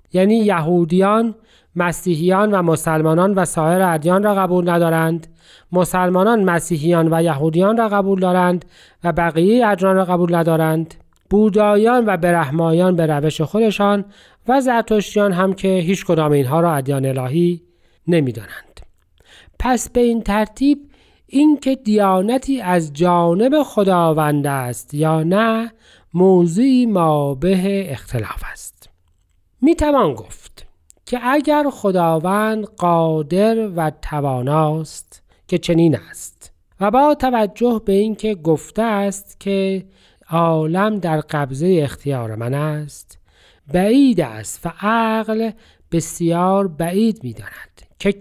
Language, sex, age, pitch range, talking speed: Persian, male, 40-59, 160-215 Hz, 115 wpm